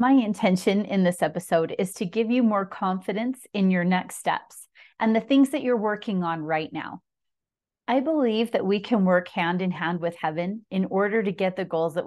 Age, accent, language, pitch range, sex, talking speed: 30-49, American, English, 180-230 Hz, female, 210 wpm